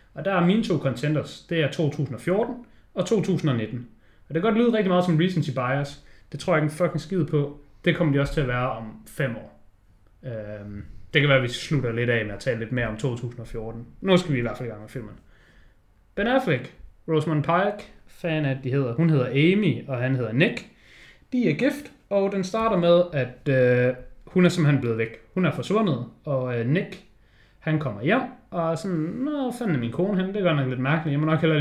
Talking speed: 225 wpm